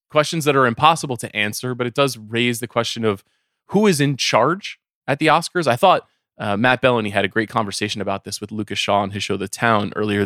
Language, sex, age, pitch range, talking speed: English, male, 20-39, 105-140 Hz, 235 wpm